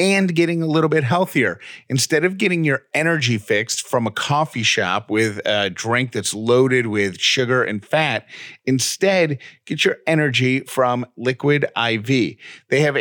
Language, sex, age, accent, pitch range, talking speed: English, male, 40-59, American, 110-145 Hz, 155 wpm